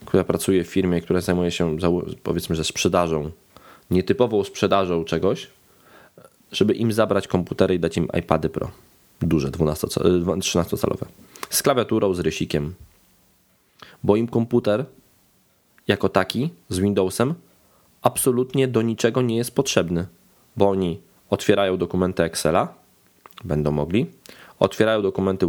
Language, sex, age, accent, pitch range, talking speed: Polish, male, 20-39, native, 85-100 Hz, 120 wpm